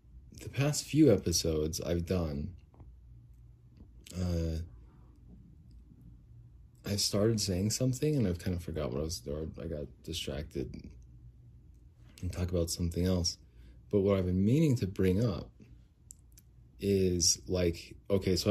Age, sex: 30-49, male